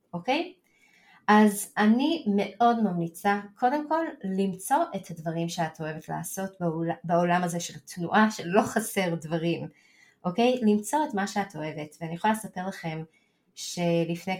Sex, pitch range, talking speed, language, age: female, 165-215 Hz, 140 wpm, Hebrew, 20-39